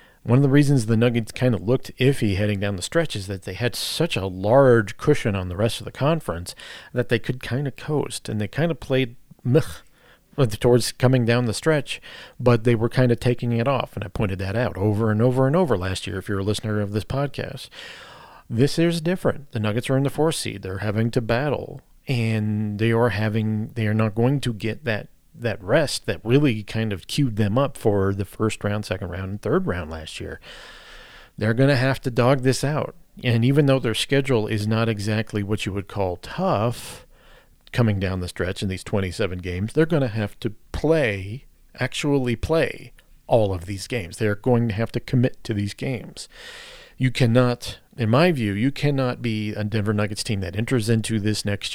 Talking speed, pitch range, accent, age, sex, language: 215 wpm, 105-130 Hz, American, 40-59, male, English